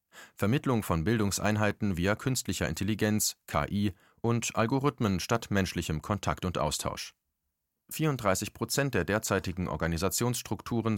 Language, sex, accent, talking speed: German, male, German, 105 wpm